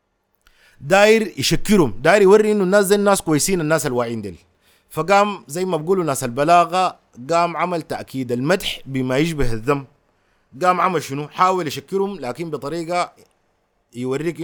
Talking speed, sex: 135 wpm, male